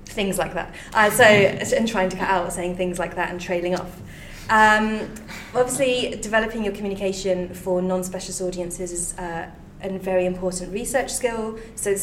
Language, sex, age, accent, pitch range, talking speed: English, female, 20-39, British, 175-190 Hz, 170 wpm